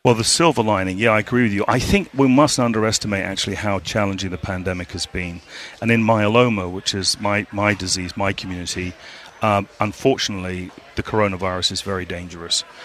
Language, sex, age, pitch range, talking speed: English, male, 40-59, 95-110 Hz, 180 wpm